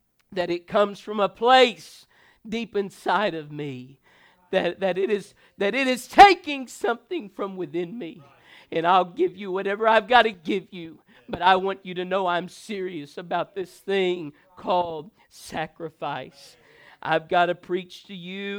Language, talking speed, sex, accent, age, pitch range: English, 165 wpm, male, American, 50-69, 140-195 Hz